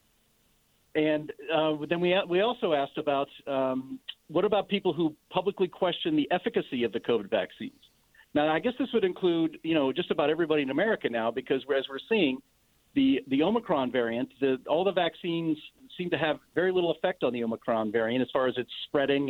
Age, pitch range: 50-69, 140-190 Hz